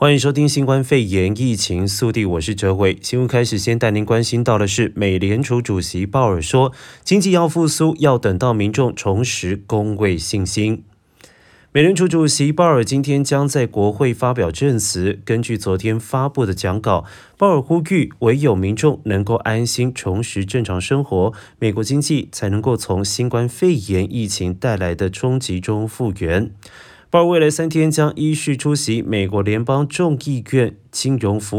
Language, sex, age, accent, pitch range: Chinese, male, 30-49, native, 105-140 Hz